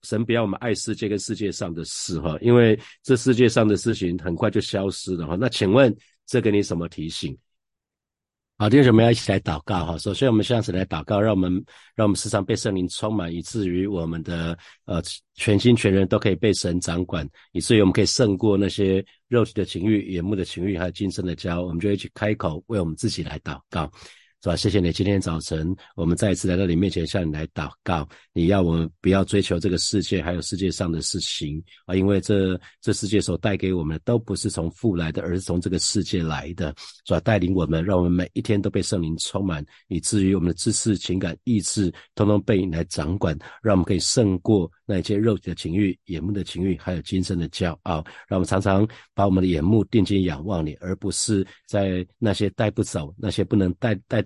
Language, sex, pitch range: Chinese, male, 90-105 Hz